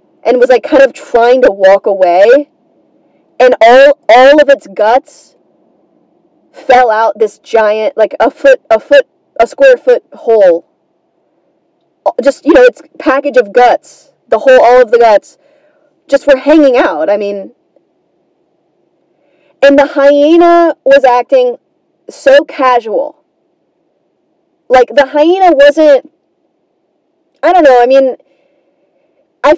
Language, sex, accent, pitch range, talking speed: English, female, American, 250-330 Hz, 130 wpm